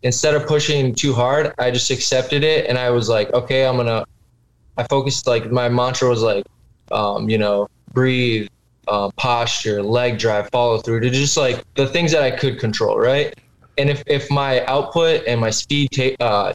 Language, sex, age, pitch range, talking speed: English, male, 20-39, 115-135 Hz, 195 wpm